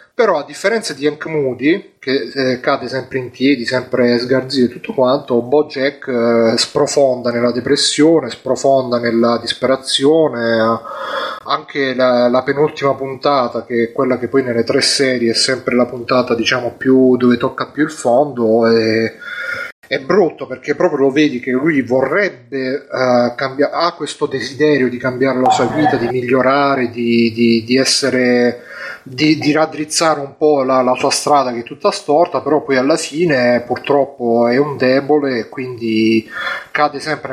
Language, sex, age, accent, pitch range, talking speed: Italian, male, 30-49, native, 125-150 Hz, 165 wpm